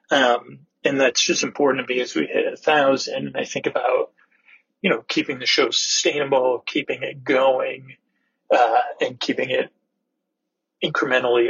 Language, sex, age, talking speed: English, male, 40-59, 155 wpm